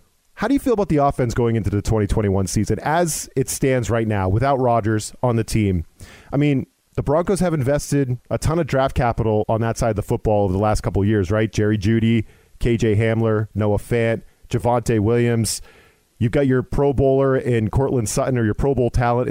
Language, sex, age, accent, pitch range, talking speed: English, male, 40-59, American, 110-140 Hz, 210 wpm